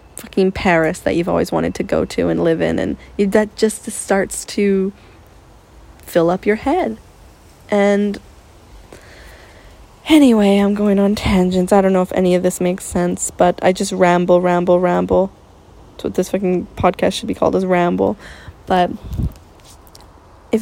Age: 20-39